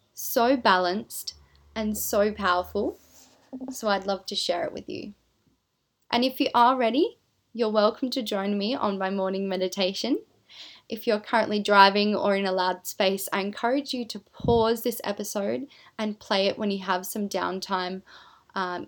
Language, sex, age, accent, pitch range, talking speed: English, female, 10-29, Australian, 195-235 Hz, 165 wpm